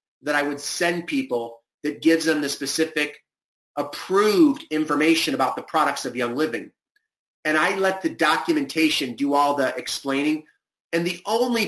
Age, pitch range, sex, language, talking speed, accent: 30-49, 140-175 Hz, male, English, 155 wpm, American